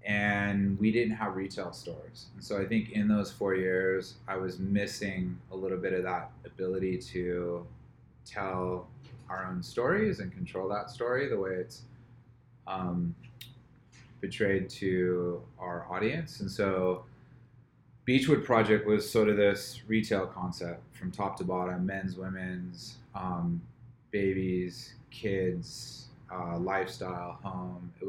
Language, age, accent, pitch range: English, 20-39, American, 95-125 Hz